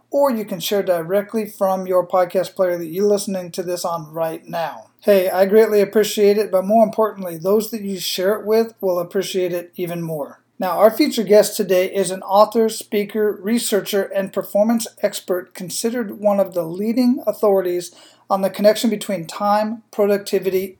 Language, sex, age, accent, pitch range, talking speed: English, male, 40-59, American, 190-220 Hz, 175 wpm